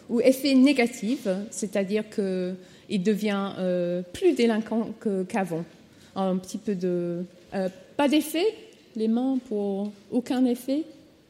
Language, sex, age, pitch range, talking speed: French, female, 30-49, 210-265 Hz, 125 wpm